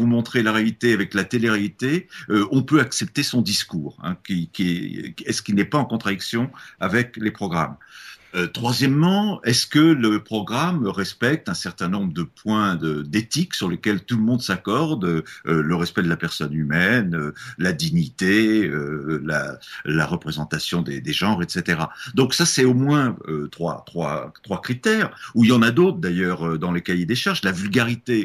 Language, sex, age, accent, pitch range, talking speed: French, male, 50-69, French, 90-135 Hz, 185 wpm